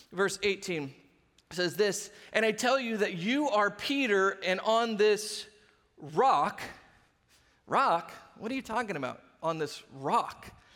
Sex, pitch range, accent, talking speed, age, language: male, 190-240 Hz, American, 140 wpm, 30-49, English